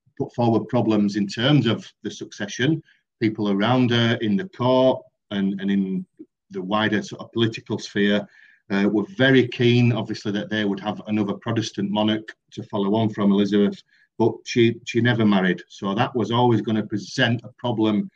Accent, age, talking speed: British, 40-59, 170 wpm